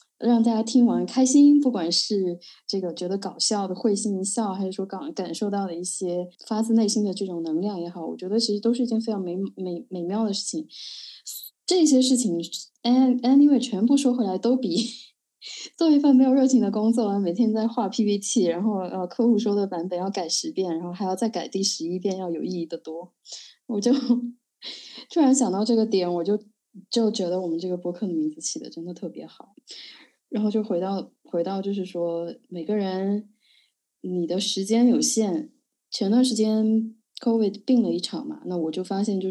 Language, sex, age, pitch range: Chinese, female, 20-39, 185-240 Hz